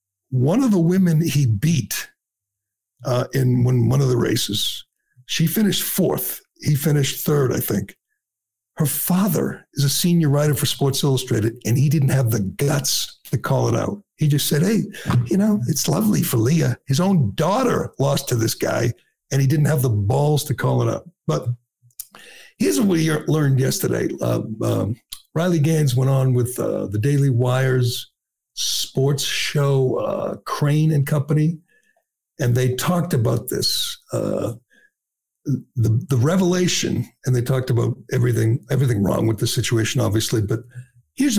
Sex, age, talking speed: male, 60-79, 160 wpm